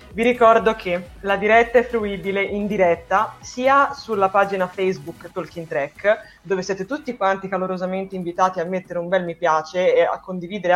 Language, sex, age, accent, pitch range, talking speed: Italian, female, 20-39, native, 180-245 Hz, 165 wpm